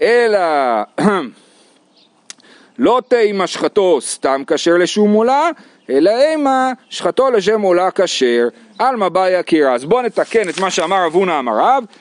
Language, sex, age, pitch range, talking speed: Hebrew, male, 40-59, 160-245 Hz, 125 wpm